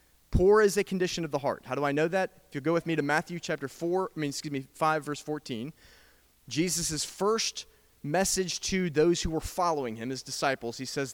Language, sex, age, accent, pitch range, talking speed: English, male, 30-49, American, 130-185 Hz, 220 wpm